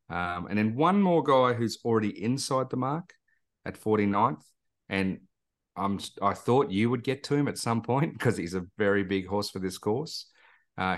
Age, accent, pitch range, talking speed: 40-59, Australian, 90-110 Hz, 195 wpm